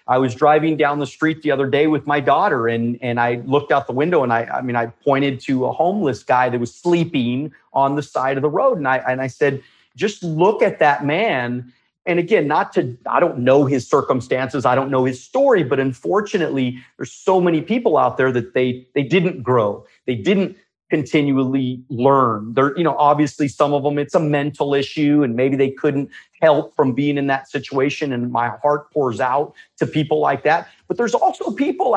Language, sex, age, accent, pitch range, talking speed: English, male, 40-59, American, 130-165 Hz, 210 wpm